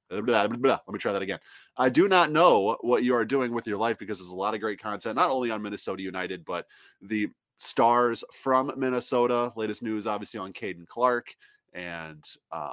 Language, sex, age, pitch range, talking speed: English, male, 20-39, 100-130 Hz, 190 wpm